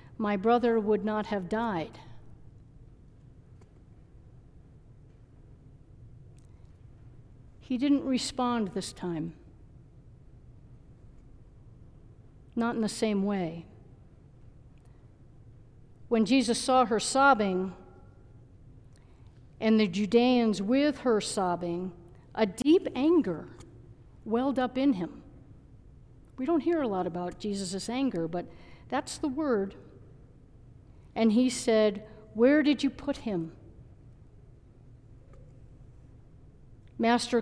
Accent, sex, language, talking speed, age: American, female, English, 90 wpm, 60-79